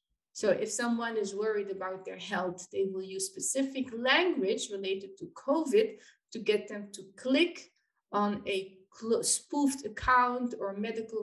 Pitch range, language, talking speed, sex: 205-265 Hz, English, 145 wpm, female